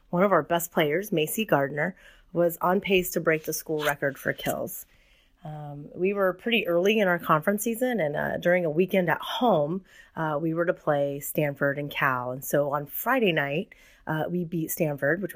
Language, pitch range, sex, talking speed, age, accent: English, 150-180 Hz, female, 200 wpm, 30-49, American